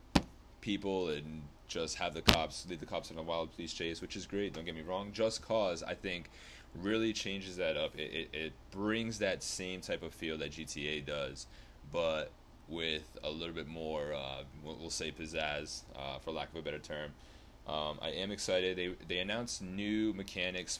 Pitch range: 80-95 Hz